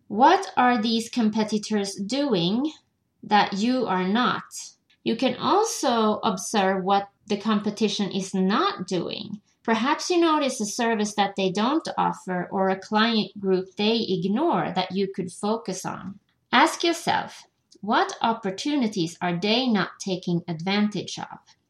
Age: 30-49